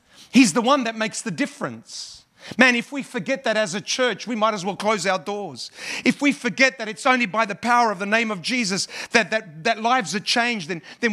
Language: English